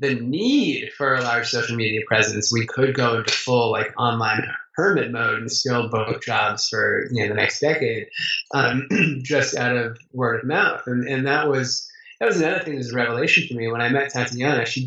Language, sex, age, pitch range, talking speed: English, male, 20-39, 120-145 Hz, 215 wpm